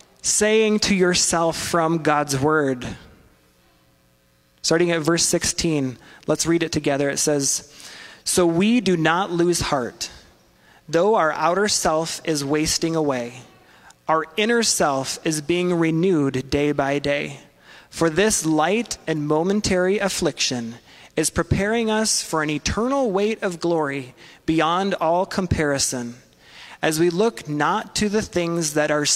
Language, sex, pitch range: English, male, 135-180 Hz